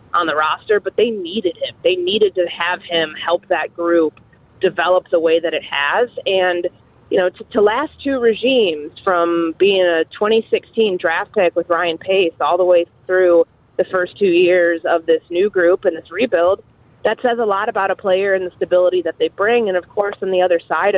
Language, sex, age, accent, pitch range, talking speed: English, female, 20-39, American, 160-210 Hz, 205 wpm